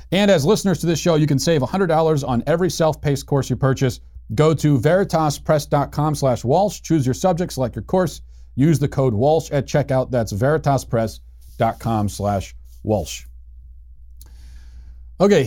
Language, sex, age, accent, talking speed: English, male, 40-59, American, 130 wpm